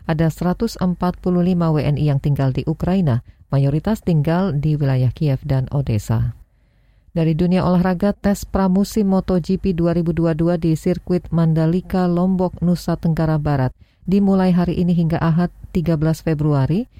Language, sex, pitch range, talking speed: Indonesian, female, 145-180 Hz, 115 wpm